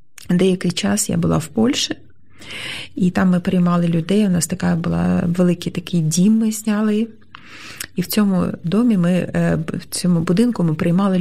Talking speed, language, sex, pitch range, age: 160 wpm, Ukrainian, female, 160-205 Hz, 30-49